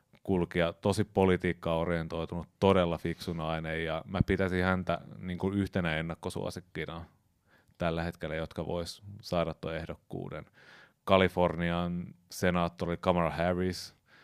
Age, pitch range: 30-49, 85-95 Hz